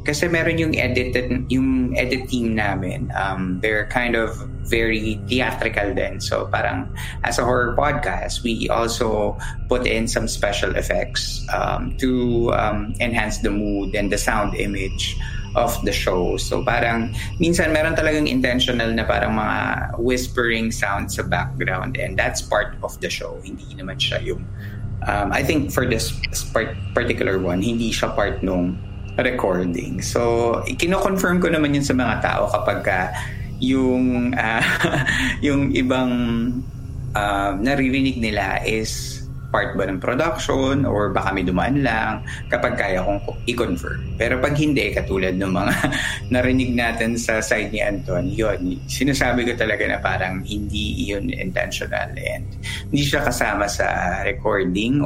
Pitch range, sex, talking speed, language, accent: 100-125 Hz, male, 145 wpm, Filipino, native